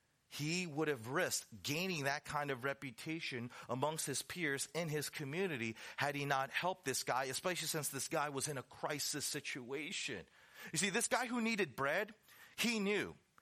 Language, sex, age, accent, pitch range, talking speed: English, male, 30-49, American, 125-185 Hz, 175 wpm